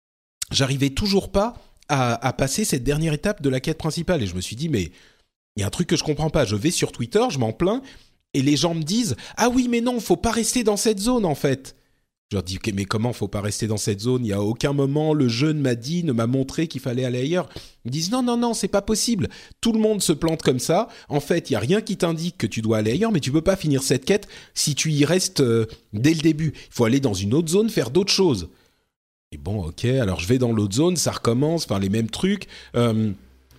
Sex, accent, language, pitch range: male, French, French, 120-175 Hz